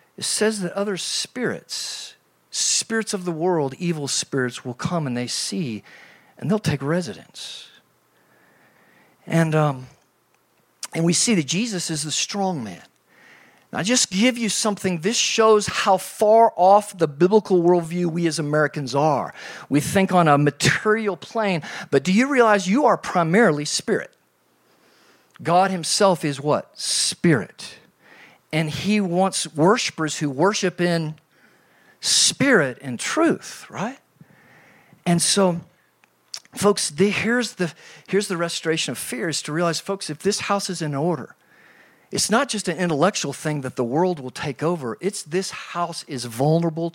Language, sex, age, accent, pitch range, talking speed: English, male, 50-69, American, 155-200 Hz, 150 wpm